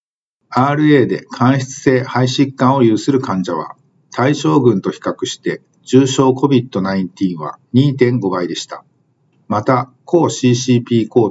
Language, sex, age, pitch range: Japanese, male, 50-69, 105-135 Hz